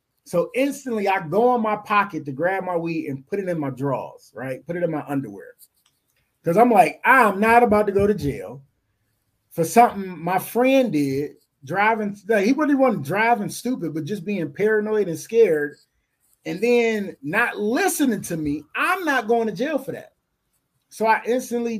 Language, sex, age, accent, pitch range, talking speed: English, male, 30-49, American, 175-245 Hz, 180 wpm